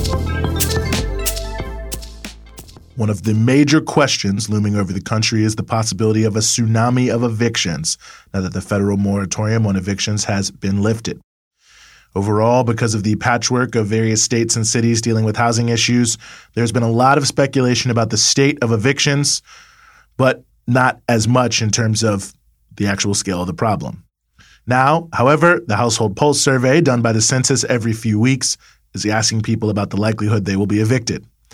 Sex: male